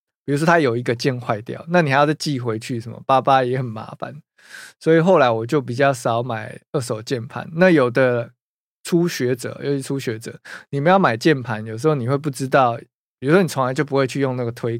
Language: Chinese